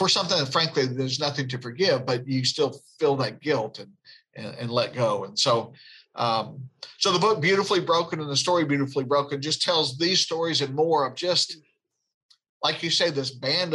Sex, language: male, English